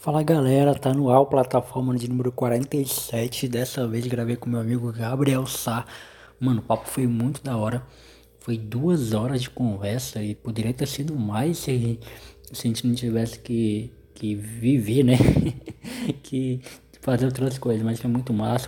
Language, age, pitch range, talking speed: Portuguese, 20-39, 110-130 Hz, 165 wpm